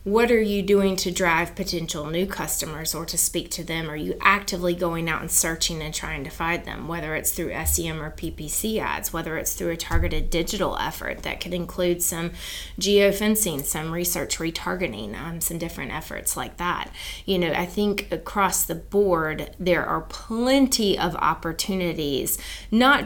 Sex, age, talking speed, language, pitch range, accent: female, 20-39, 175 wpm, English, 165-195 Hz, American